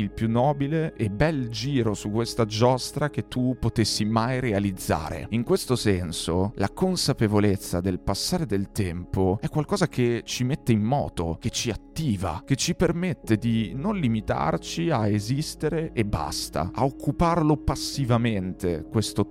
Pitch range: 100-130 Hz